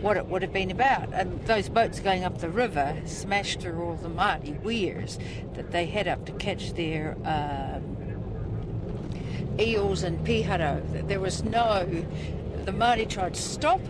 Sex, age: female, 60-79